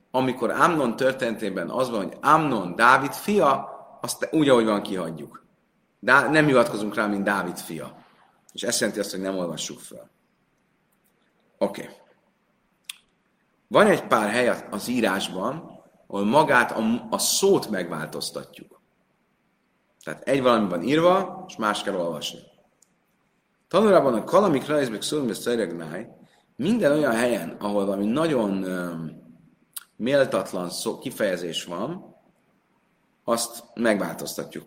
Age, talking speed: 40-59, 120 wpm